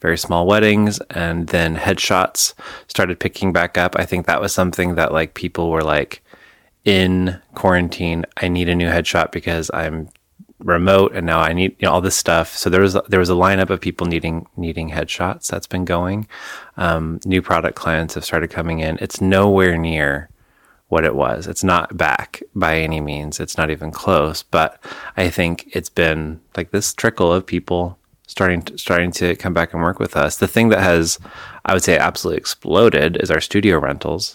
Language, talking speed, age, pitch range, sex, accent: English, 190 wpm, 20-39, 80-95 Hz, male, American